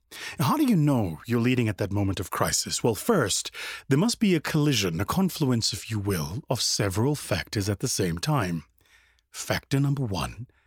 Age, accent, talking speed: 30-49, American, 185 wpm